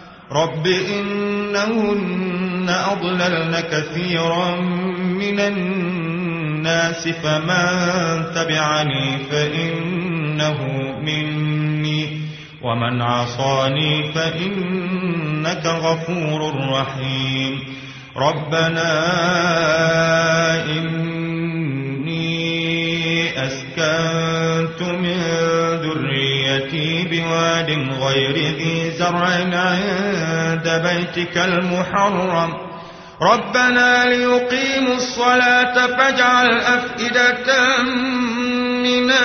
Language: Arabic